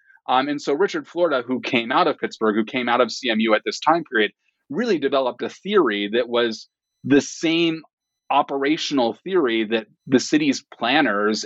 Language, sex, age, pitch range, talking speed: English, male, 30-49, 110-150 Hz, 175 wpm